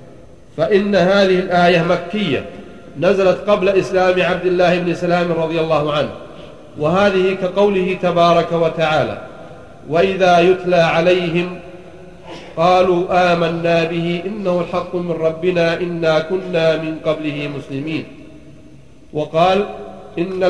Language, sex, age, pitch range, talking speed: Arabic, male, 40-59, 165-185 Hz, 100 wpm